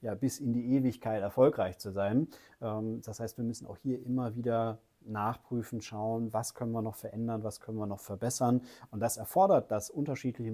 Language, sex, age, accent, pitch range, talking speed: German, male, 30-49, German, 105-125 Hz, 190 wpm